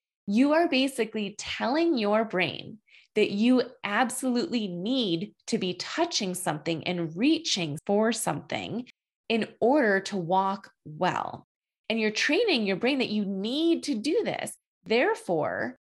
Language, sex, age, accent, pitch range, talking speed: English, female, 20-39, American, 185-235 Hz, 130 wpm